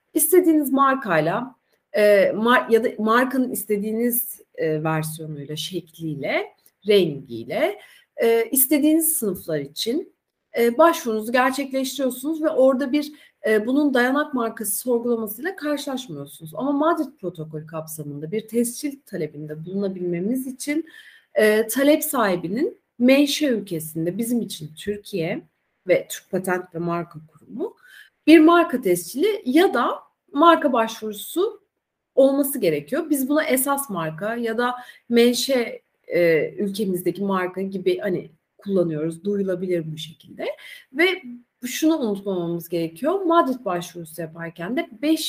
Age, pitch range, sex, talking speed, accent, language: 40-59, 180-295 Hz, female, 110 wpm, native, Turkish